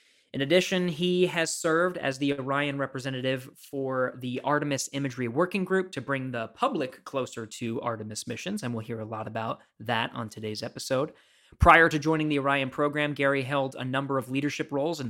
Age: 20-39